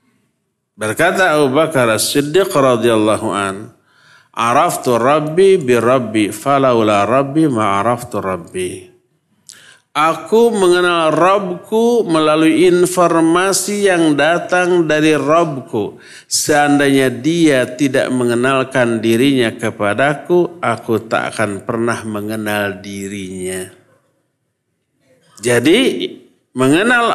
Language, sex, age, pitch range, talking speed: Indonesian, male, 50-69, 120-185 Hz, 75 wpm